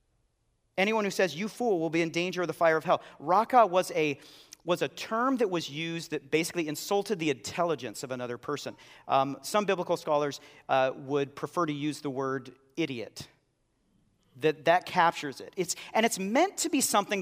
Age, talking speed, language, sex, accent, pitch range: 40-59, 190 wpm, English, male, American, 135-190 Hz